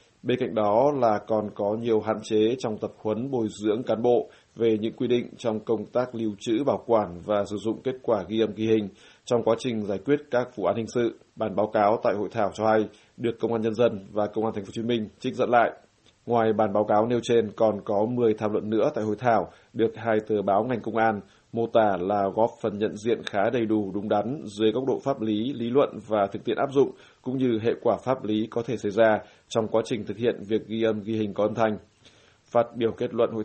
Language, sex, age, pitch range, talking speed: Vietnamese, male, 20-39, 105-115 Hz, 260 wpm